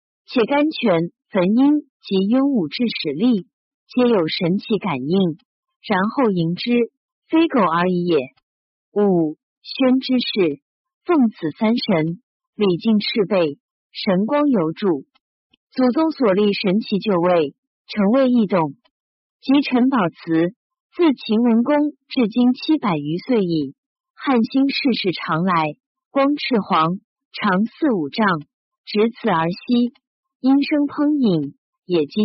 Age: 50-69